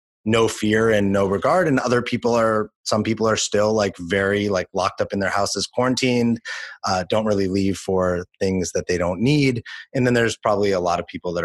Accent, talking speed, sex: American, 215 wpm, male